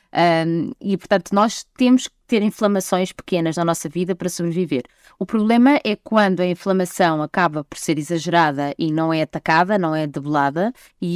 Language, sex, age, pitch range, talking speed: Portuguese, female, 20-39, 175-230 Hz, 170 wpm